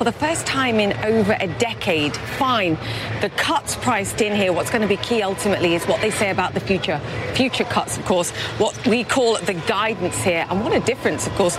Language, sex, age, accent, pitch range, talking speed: English, female, 30-49, British, 190-245 Hz, 225 wpm